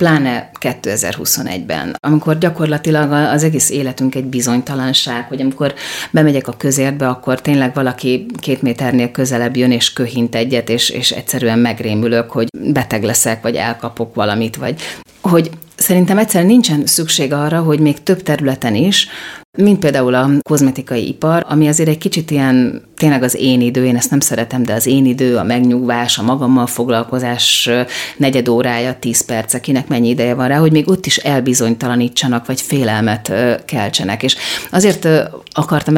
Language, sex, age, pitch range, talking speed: Hungarian, female, 30-49, 125-155 Hz, 155 wpm